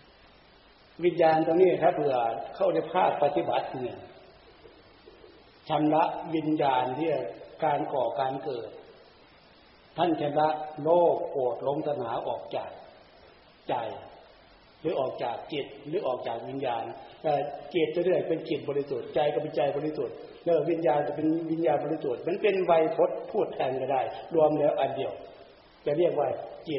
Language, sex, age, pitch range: Thai, male, 60-79, 140-170 Hz